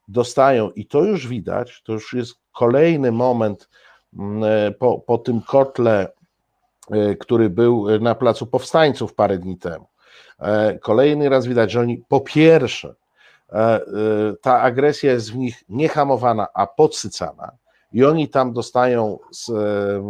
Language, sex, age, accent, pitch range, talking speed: Polish, male, 50-69, native, 105-135 Hz, 125 wpm